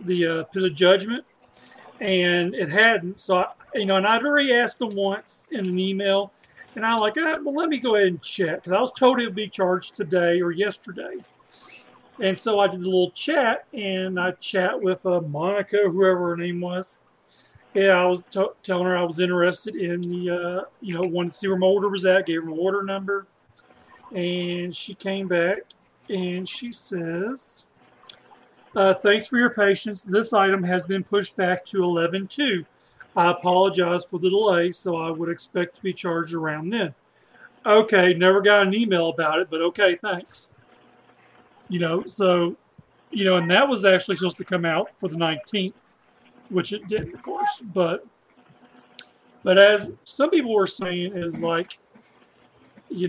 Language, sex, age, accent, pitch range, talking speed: English, male, 40-59, American, 180-205 Hz, 185 wpm